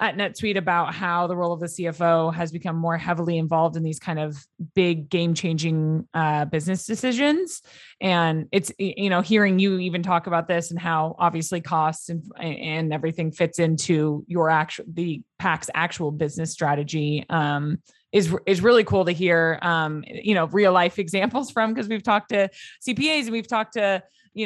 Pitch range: 160-195 Hz